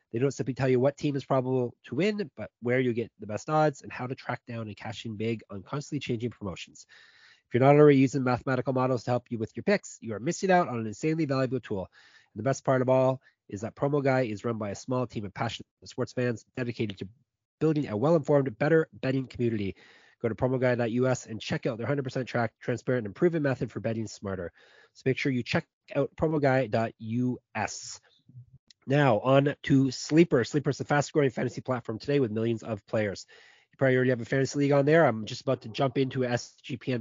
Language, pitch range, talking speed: English, 115-140 Hz, 220 wpm